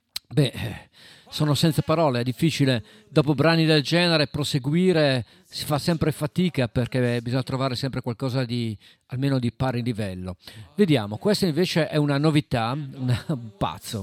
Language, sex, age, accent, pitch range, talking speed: Italian, male, 50-69, native, 115-145 Hz, 140 wpm